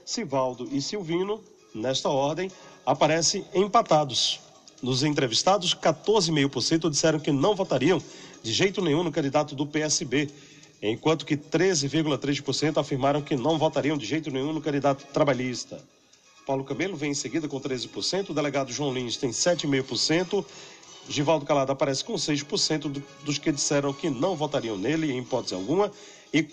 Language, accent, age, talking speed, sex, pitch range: Portuguese, Brazilian, 40-59, 140 wpm, male, 140-165 Hz